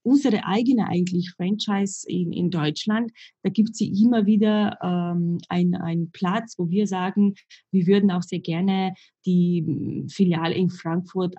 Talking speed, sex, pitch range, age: 150 wpm, female, 170-200 Hz, 20-39